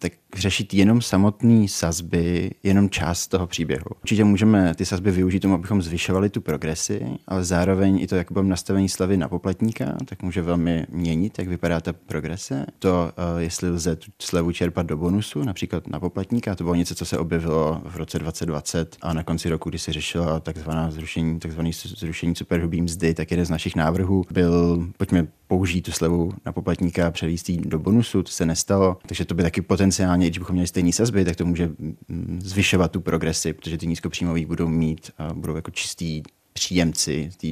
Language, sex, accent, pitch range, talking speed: Czech, male, native, 85-95 Hz, 185 wpm